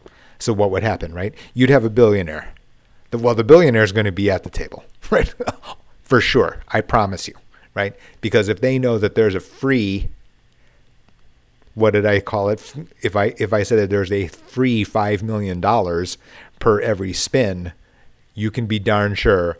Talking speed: 180 wpm